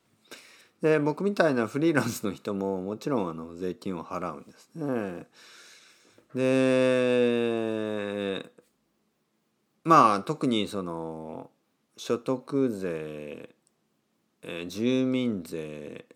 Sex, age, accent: male, 40-59, native